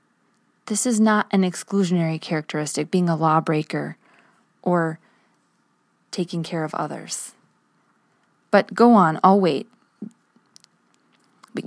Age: 20-39